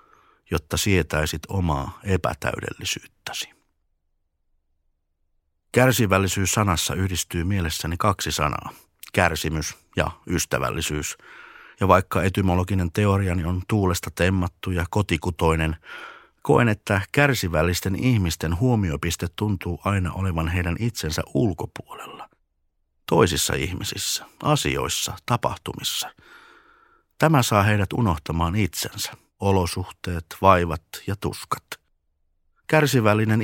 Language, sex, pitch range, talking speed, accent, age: Finnish, male, 75-100 Hz, 85 wpm, native, 50-69